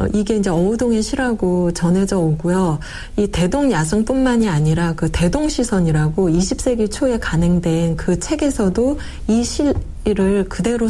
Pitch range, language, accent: 175-245 Hz, Korean, native